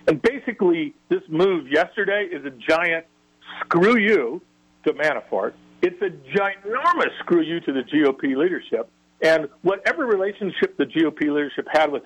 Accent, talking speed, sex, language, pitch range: American, 145 wpm, male, English, 125-195 Hz